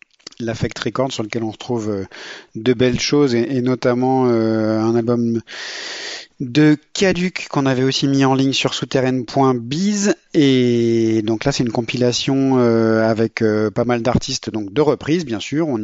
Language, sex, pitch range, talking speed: French, male, 110-135 Hz, 160 wpm